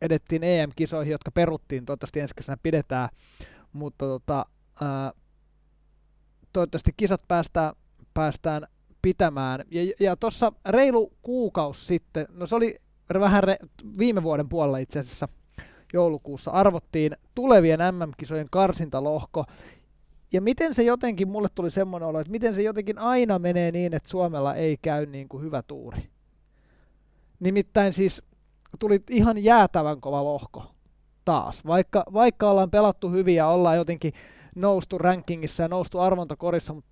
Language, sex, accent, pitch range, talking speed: Finnish, male, native, 155-195 Hz, 130 wpm